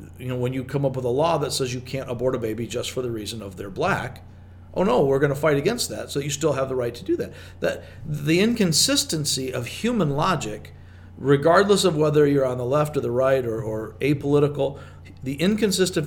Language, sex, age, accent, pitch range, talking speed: English, male, 50-69, American, 100-150 Hz, 230 wpm